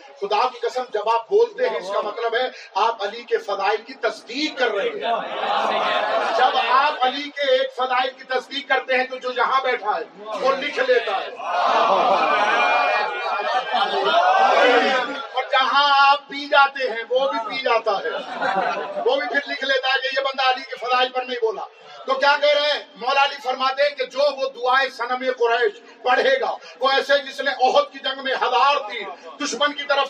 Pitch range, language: 260-290 Hz, Urdu